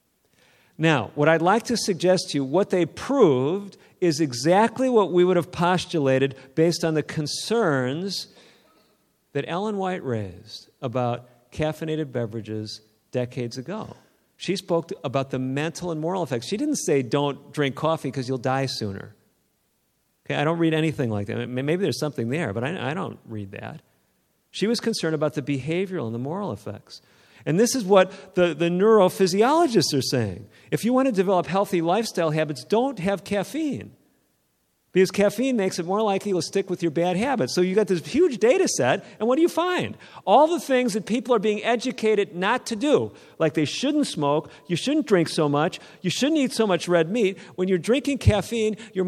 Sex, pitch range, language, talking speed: male, 145-215 Hz, English, 185 wpm